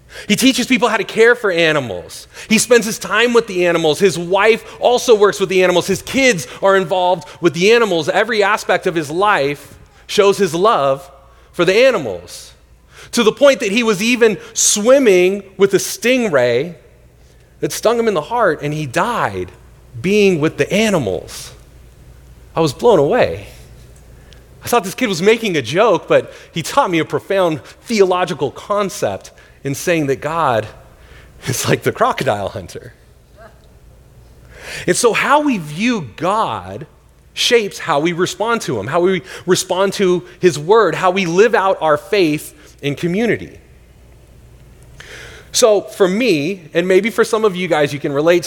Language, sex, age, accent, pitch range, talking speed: English, male, 30-49, American, 150-215 Hz, 165 wpm